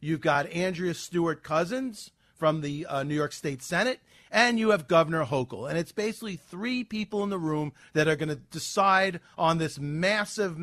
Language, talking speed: English, 180 wpm